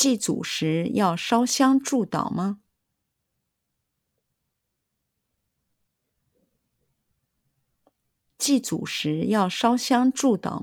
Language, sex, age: Chinese, female, 50-69